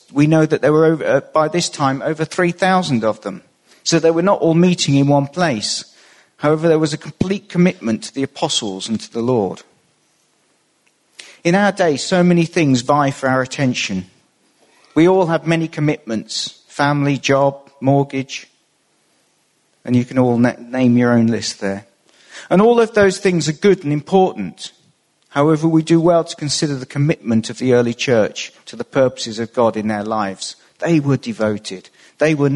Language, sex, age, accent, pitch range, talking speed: English, male, 50-69, British, 120-160 Hz, 175 wpm